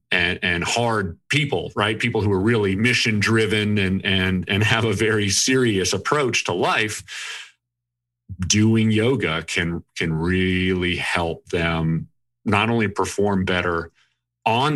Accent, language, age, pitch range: American, English, 40-59, 95-120 Hz